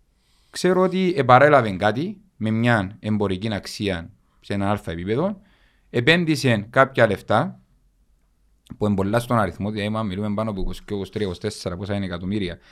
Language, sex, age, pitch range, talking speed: Greek, male, 40-59, 100-135 Hz, 120 wpm